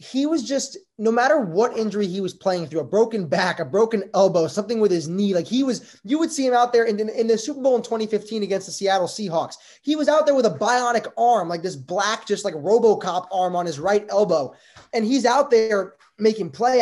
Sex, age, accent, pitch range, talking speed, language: male, 20-39, American, 180-225 Hz, 240 wpm, English